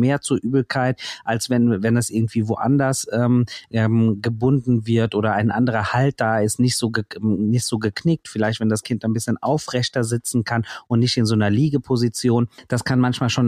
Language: German